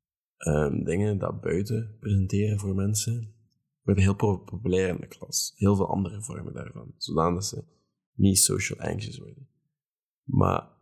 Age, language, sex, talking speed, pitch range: 20-39, Dutch, male, 145 wpm, 95-120 Hz